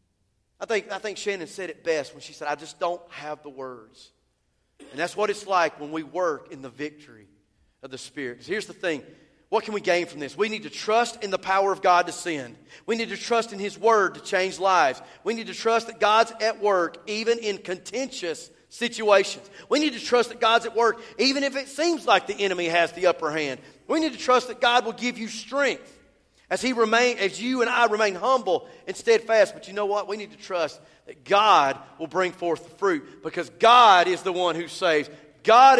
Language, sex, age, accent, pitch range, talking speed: English, male, 40-59, American, 165-220 Hz, 230 wpm